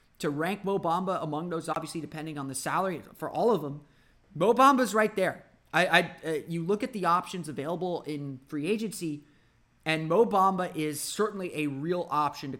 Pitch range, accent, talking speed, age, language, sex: 140-185 Hz, American, 190 wpm, 30-49, English, male